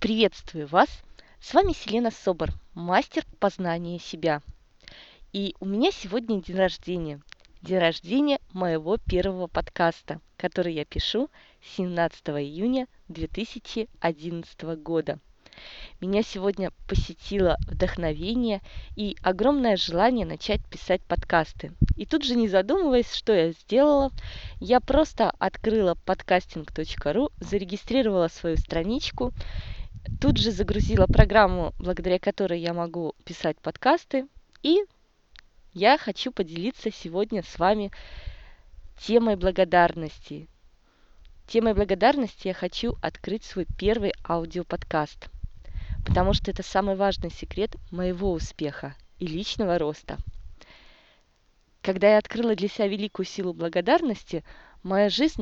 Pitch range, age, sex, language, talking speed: 165-220 Hz, 20-39, female, Russian, 110 wpm